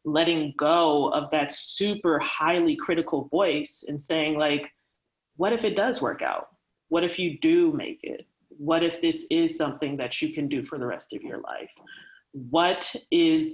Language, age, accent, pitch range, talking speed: English, 30-49, American, 155-235 Hz, 175 wpm